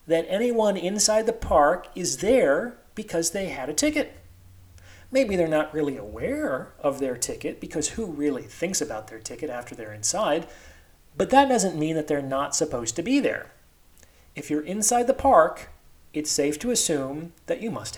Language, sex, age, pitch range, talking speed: English, male, 30-49, 135-195 Hz, 175 wpm